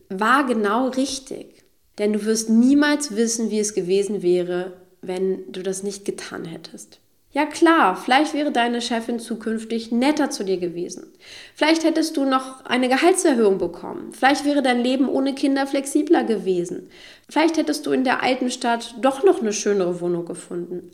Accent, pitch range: German, 195-270 Hz